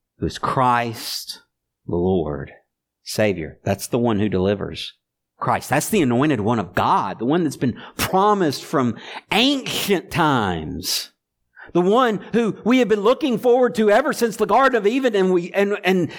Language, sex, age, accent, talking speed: English, male, 50-69, American, 165 wpm